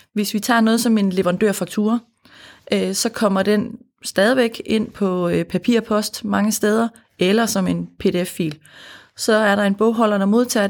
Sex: female